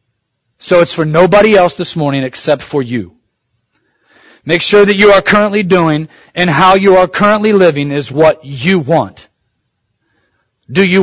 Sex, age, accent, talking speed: male, 40-59, American, 160 wpm